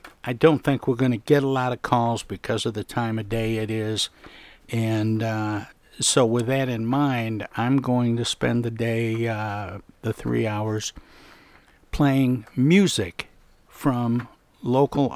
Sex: male